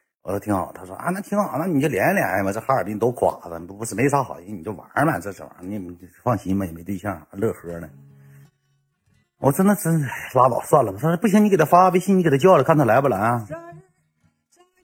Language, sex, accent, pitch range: Chinese, male, native, 105-170 Hz